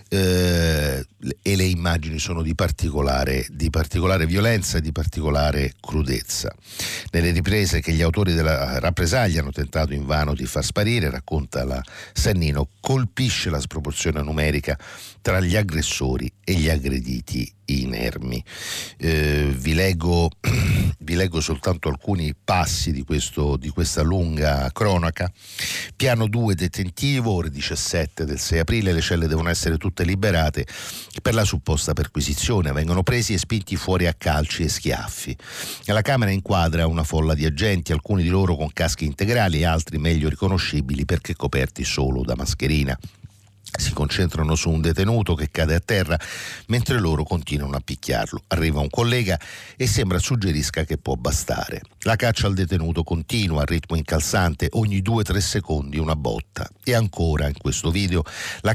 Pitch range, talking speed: 75-100 Hz, 145 wpm